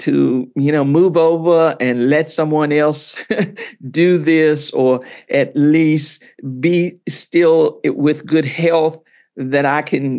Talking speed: 130 wpm